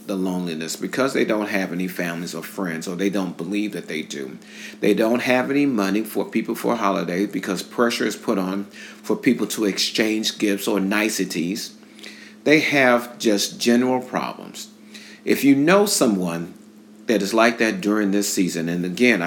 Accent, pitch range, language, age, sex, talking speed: American, 95-110 Hz, English, 40-59, male, 175 wpm